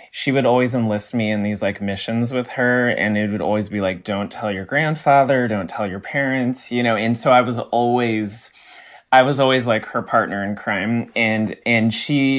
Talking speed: 210 wpm